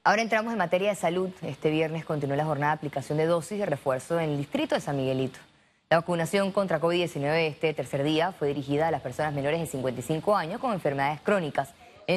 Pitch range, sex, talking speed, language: 165-230 Hz, female, 210 wpm, Spanish